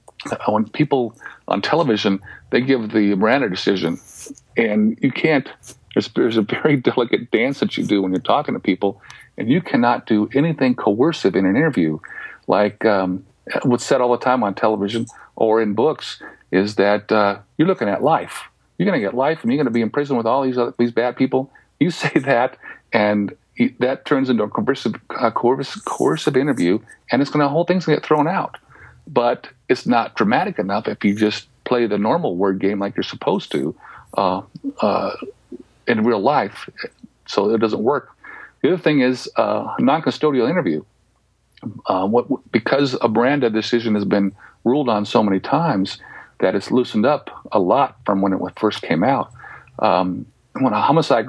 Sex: male